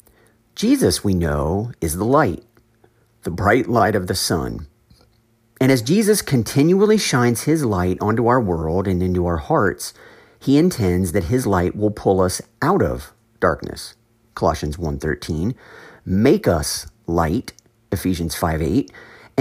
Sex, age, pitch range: male, 50-69, 90-120 Hz